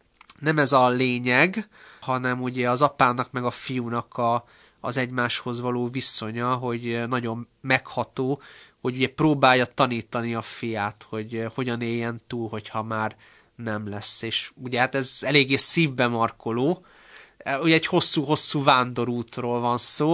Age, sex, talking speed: 30-49, male, 135 wpm